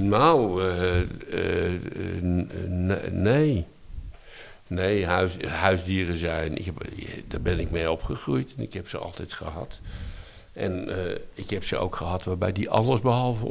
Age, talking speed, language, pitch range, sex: 60-79, 150 wpm, Dutch, 90-115 Hz, male